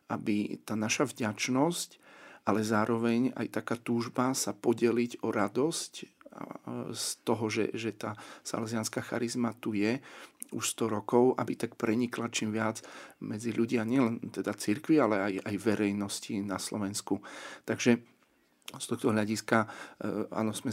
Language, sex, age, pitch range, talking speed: Slovak, male, 40-59, 100-115 Hz, 135 wpm